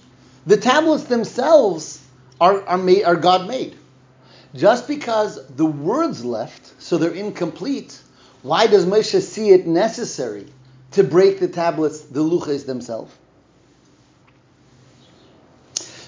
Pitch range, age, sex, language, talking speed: 160-215 Hz, 40-59, male, English, 110 wpm